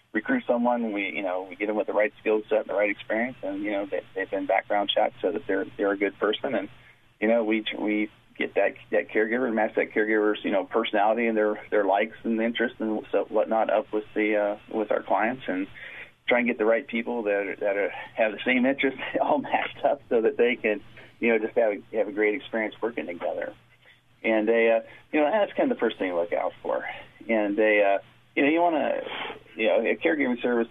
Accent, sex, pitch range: American, male, 105-120 Hz